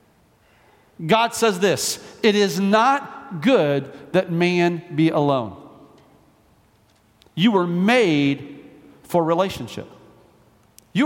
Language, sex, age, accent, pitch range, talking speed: English, male, 50-69, American, 185-240 Hz, 90 wpm